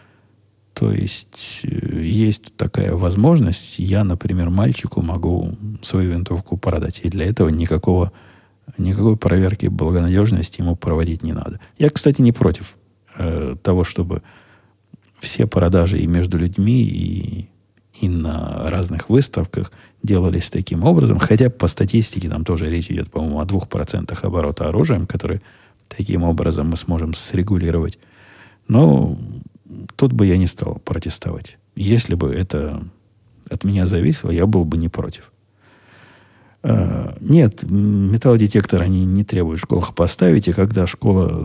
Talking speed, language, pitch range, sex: 130 wpm, Russian, 85-105 Hz, male